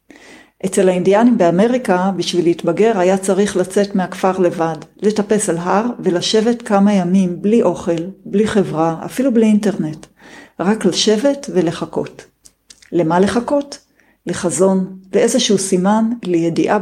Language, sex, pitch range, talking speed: Hebrew, female, 175-215 Hz, 115 wpm